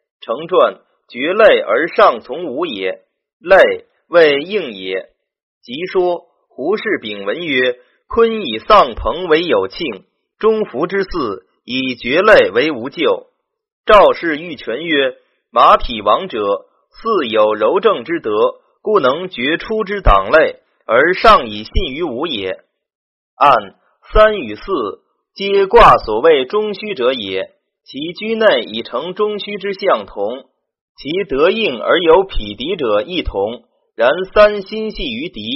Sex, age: male, 30-49